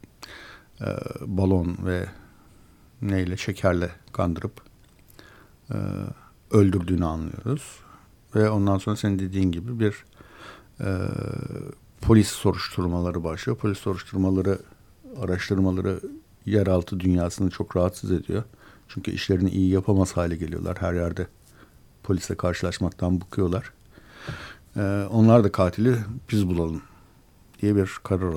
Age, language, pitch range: 60-79, Turkish, 90-110 Hz